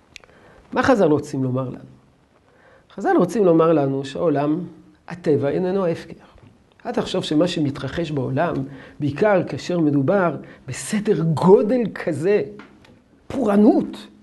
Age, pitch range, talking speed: 50-69, 145-205 Hz, 105 wpm